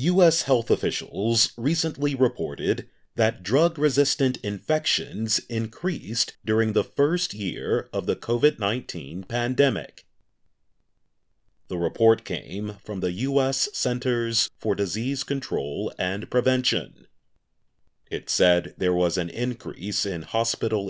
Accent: American